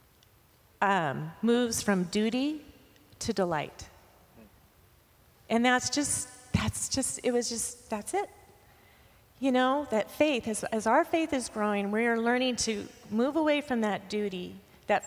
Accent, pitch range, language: American, 190-235 Hz, English